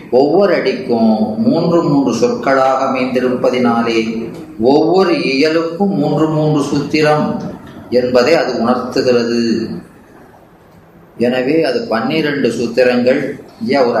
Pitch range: 125-160 Hz